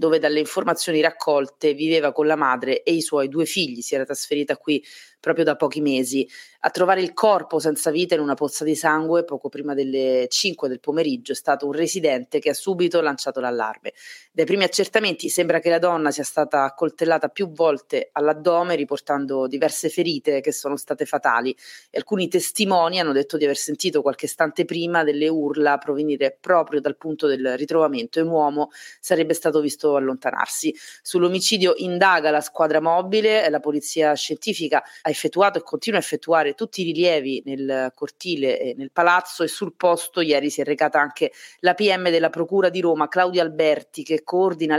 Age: 30-49